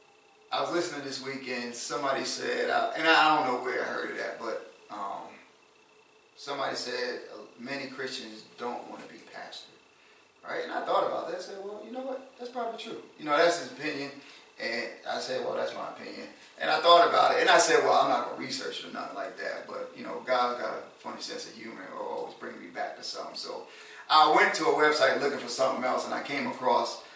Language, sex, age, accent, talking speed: English, male, 30-49, American, 225 wpm